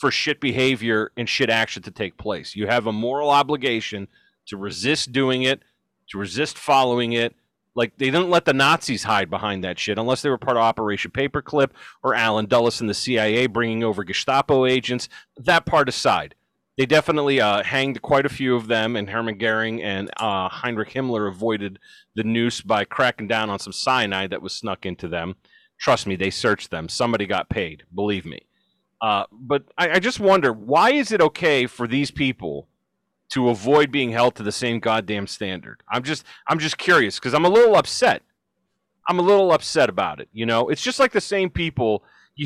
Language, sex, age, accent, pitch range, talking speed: English, male, 30-49, American, 105-140 Hz, 195 wpm